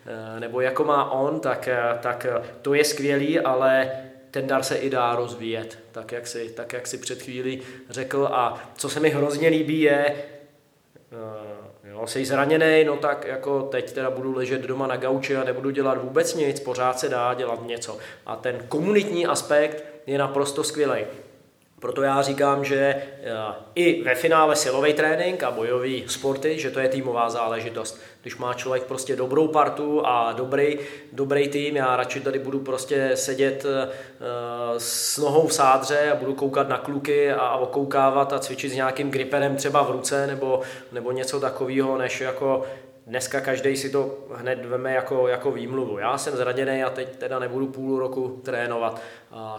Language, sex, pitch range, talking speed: Czech, male, 125-140 Hz, 170 wpm